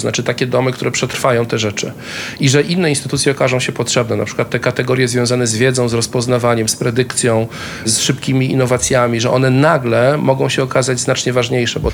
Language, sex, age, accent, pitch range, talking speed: Polish, male, 40-59, native, 125-140 Hz, 185 wpm